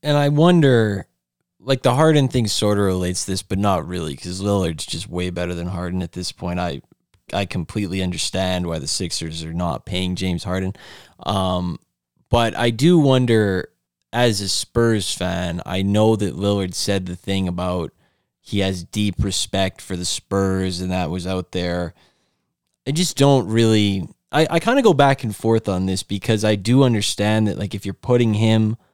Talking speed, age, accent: 185 wpm, 20-39, American